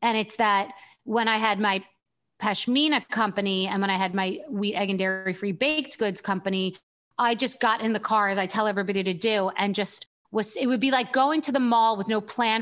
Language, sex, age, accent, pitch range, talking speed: English, female, 30-49, American, 195-235 Hz, 225 wpm